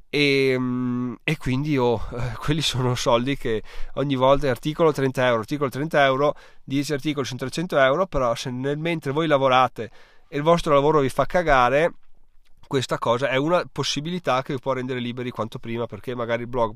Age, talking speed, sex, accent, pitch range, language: 20-39, 175 wpm, male, native, 115-150 Hz, Italian